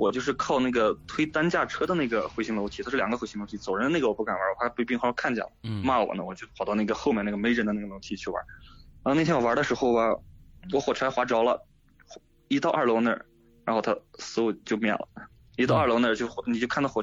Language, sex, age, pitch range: Chinese, male, 20-39, 105-130 Hz